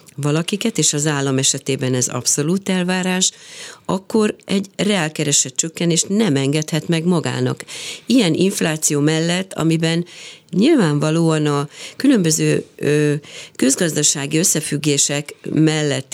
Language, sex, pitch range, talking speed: Hungarian, female, 145-190 Hz, 100 wpm